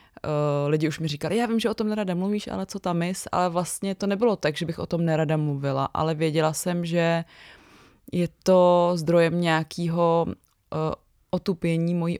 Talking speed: 185 wpm